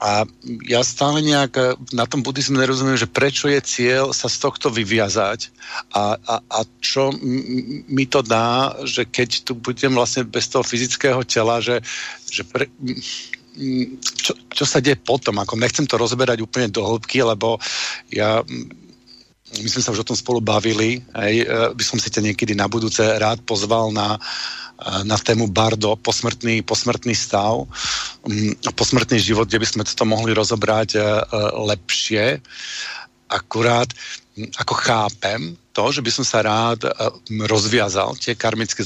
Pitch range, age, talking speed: 110-125 Hz, 50-69, 155 wpm